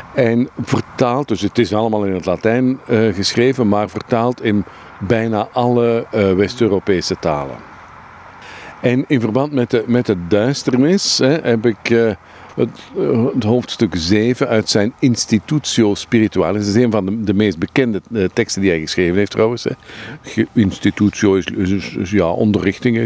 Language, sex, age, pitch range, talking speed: Dutch, male, 50-69, 95-120 Hz, 160 wpm